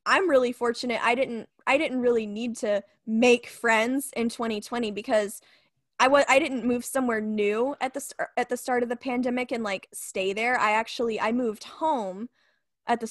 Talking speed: 195 wpm